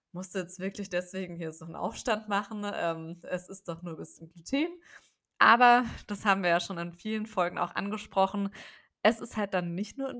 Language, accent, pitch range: German, German, 175-220 Hz